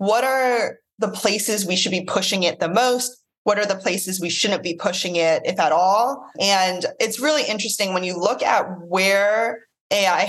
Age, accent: 20-39, American